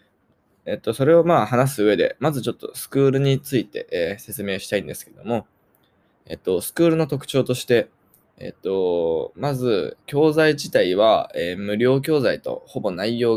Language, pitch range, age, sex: Japanese, 105-135 Hz, 20-39, male